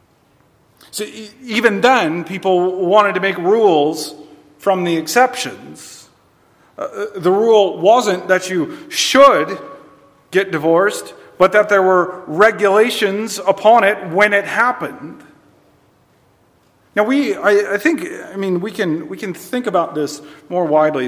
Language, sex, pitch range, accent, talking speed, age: English, male, 145-210 Hz, American, 130 wpm, 40-59